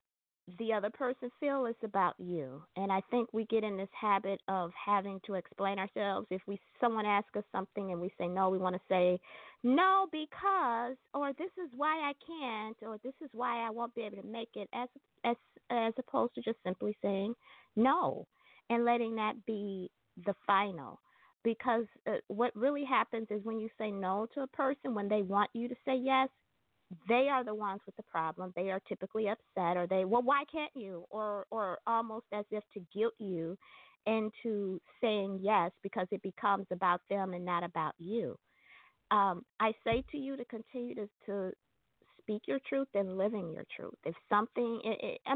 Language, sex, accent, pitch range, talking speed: English, female, American, 195-255 Hz, 190 wpm